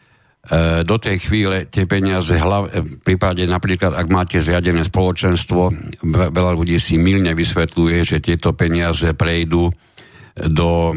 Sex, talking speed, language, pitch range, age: male, 120 wpm, Slovak, 80-95 Hz, 60-79